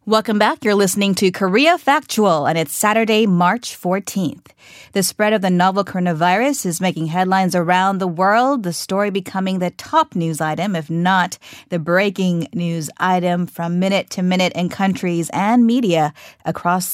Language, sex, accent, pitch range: Korean, female, American, 170-215 Hz